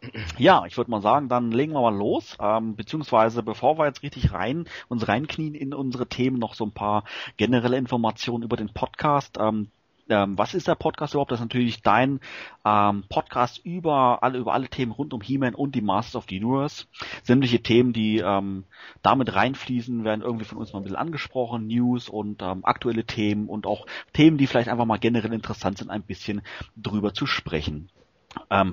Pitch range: 100-130 Hz